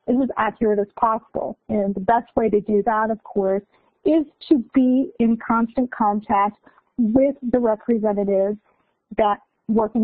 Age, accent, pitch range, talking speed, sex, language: 40-59, American, 215-260 Hz, 155 wpm, female, English